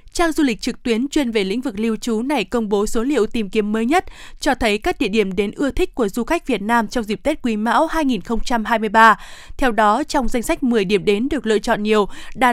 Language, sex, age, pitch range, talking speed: Vietnamese, female, 20-39, 220-280 Hz, 250 wpm